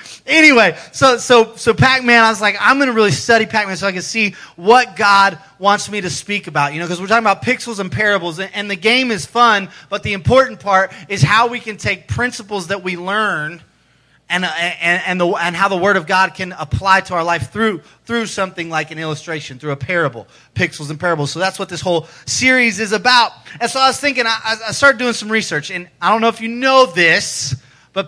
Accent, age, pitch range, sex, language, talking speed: American, 30-49, 165-215 Hz, male, English, 230 wpm